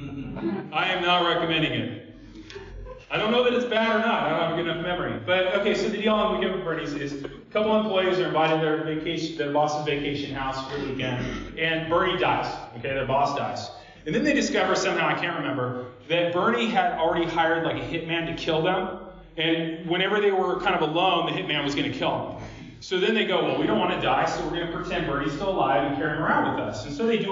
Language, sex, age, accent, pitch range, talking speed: English, male, 30-49, American, 140-190 Hz, 250 wpm